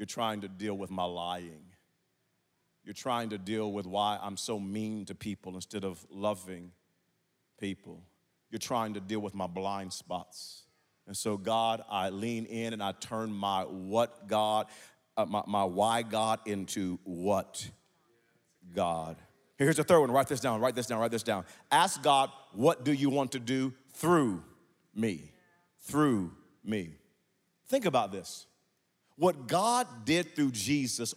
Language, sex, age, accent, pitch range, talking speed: English, male, 40-59, American, 105-175 Hz, 160 wpm